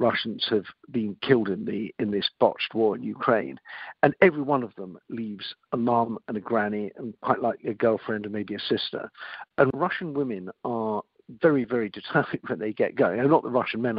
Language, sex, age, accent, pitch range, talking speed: English, male, 50-69, British, 105-130 Hz, 205 wpm